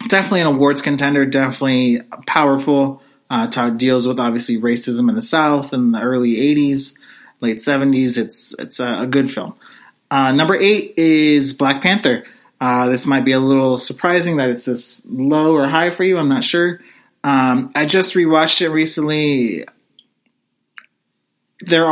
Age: 30-49